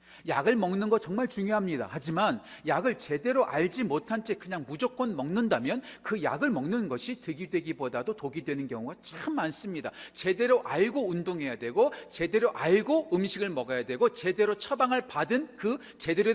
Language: Korean